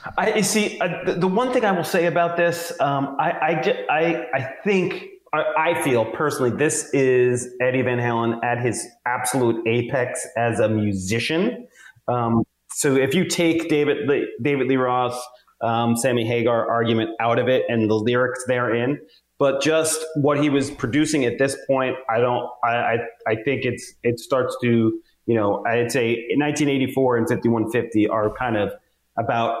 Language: English